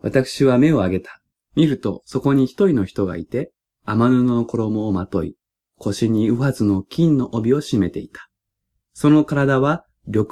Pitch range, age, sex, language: 100-145 Hz, 20-39, male, Japanese